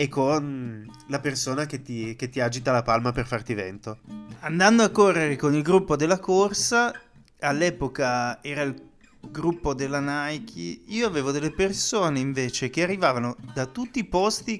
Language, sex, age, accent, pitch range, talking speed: Italian, male, 30-49, native, 130-175 Hz, 155 wpm